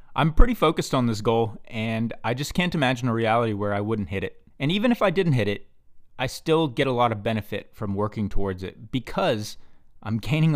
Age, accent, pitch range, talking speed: 30-49, American, 100-130 Hz, 220 wpm